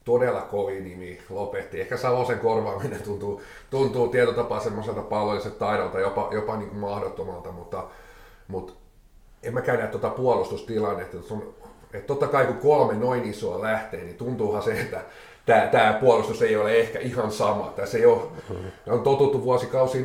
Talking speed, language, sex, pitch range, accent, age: 145 wpm, Finnish, male, 110-140 Hz, native, 30-49